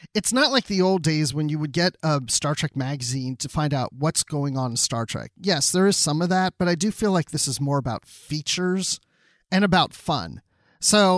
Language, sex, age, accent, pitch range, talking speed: English, male, 40-59, American, 140-180 Hz, 230 wpm